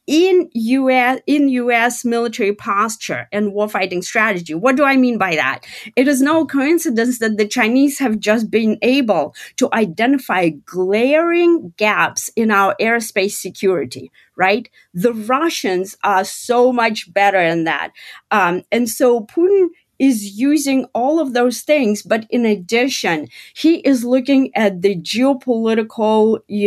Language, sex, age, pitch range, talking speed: English, female, 40-59, 205-260 Hz, 140 wpm